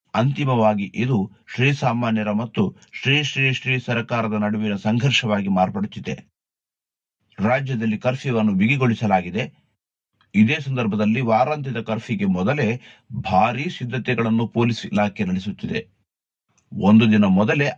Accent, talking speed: native, 95 wpm